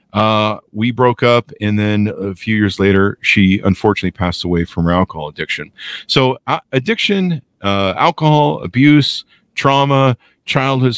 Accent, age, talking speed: American, 40-59, 140 wpm